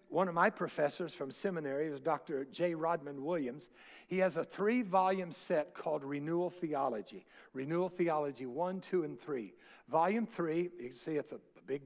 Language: English